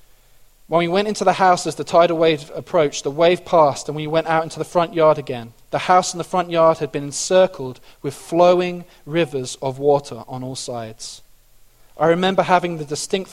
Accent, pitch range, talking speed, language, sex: British, 130-165 Hz, 205 wpm, English, male